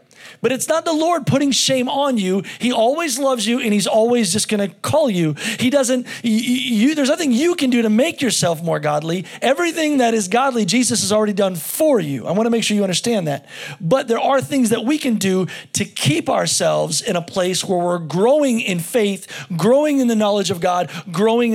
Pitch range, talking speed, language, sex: 165-235 Hz, 215 wpm, English, male